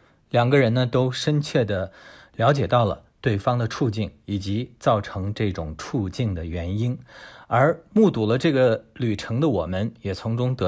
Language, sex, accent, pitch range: Chinese, male, native, 100-135 Hz